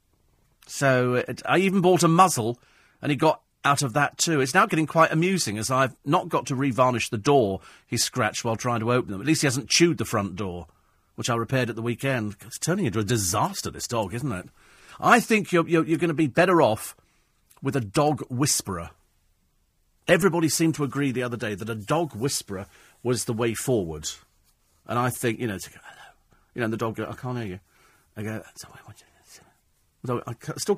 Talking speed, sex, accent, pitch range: 220 wpm, male, British, 105-155 Hz